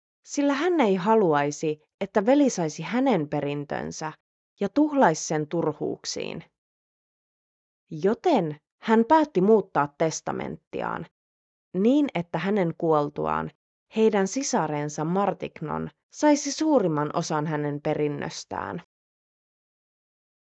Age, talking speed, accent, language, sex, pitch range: 30-49, 85 wpm, native, Finnish, female, 150-235 Hz